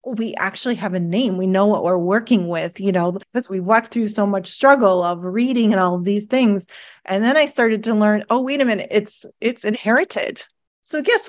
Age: 30-49